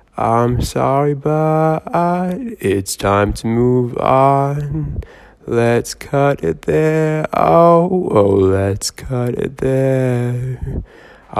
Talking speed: 95 wpm